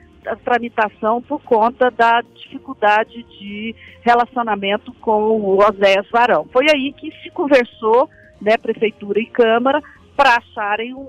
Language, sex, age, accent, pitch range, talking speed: Portuguese, female, 50-69, Brazilian, 220-280 Hz, 130 wpm